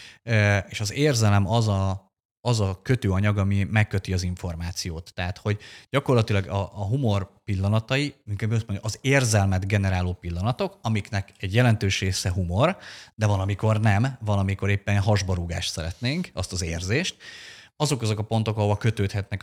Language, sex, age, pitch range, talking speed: Hungarian, male, 30-49, 95-115 Hz, 140 wpm